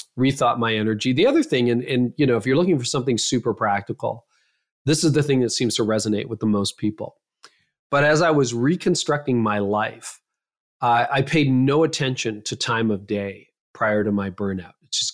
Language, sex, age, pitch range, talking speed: English, male, 40-59, 110-145 Hz, 200 wpm